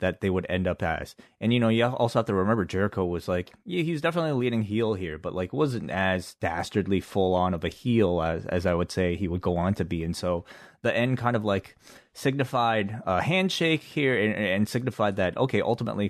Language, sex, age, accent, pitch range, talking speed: English, male, 20-39, American, 90-115 Hz, 225 wpm